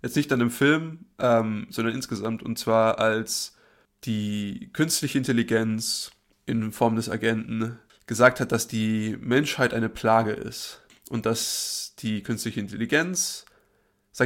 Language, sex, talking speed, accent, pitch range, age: German, male, 135 wpm, German, 115-135 Hz, 20-39